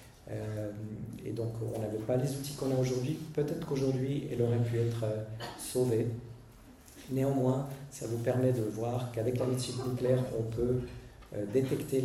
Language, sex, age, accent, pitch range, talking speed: French, male, 50-69, French, 115-130 Hz, 165 wpm